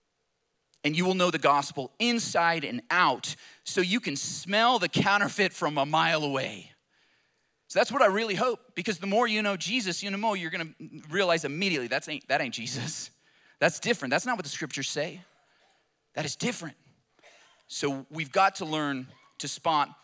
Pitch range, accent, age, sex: 135-190 Hz, American, 30-49, male